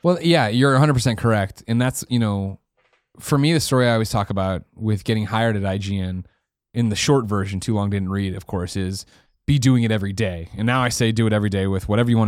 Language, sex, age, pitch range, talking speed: English, male, 20-39, 100-130 Hz, 245 wpm